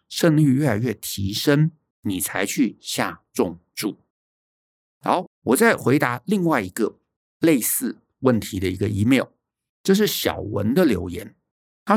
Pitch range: 125-180 Hz